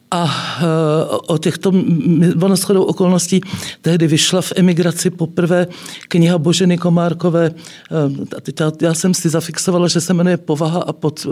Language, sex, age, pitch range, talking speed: Czech, male, 50-69, 160-195 Hz, 120 wpm